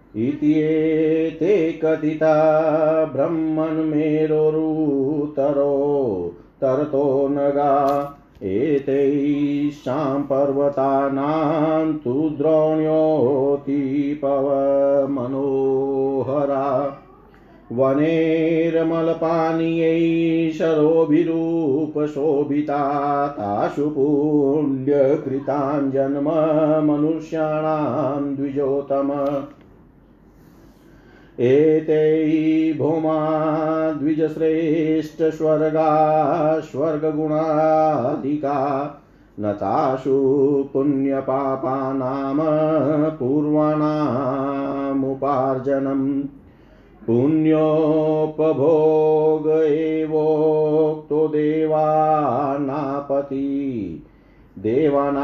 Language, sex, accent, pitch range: Hindi, male, native, 140-155 Hz